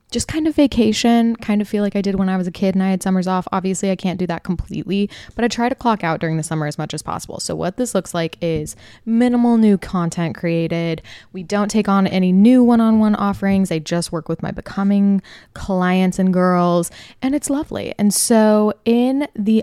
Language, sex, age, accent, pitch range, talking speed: English, female, 20-39, American, 175-220 Hz, 225 wpm